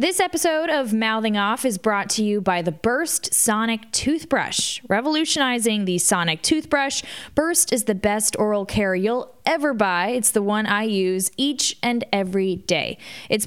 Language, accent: English, American